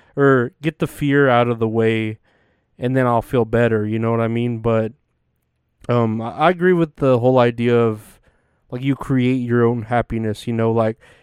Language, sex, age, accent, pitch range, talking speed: English, male, 20-39, American, 115-135 Hz, 200 wpm